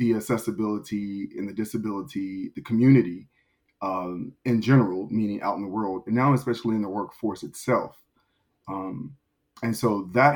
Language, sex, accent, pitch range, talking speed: English, male, American, 105-120 Hz, 150 wpm